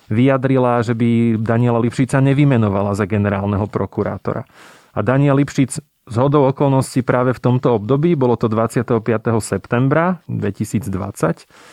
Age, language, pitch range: 30-49, Slovak, 110-135 Hz